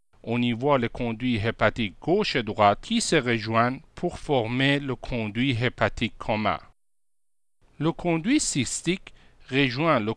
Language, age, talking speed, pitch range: French, 50-69, 135 wpm, 115-180 Hz